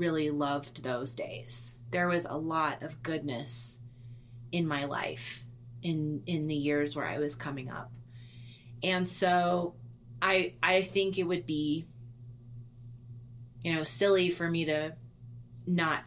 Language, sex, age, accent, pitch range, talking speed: English, female, 30-49, American, 120-155 Hz, 140 wpm